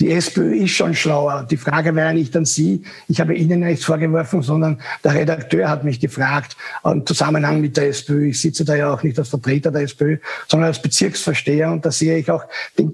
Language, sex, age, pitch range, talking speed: German, male, 60-79, 160-185 Hz, 220 wpm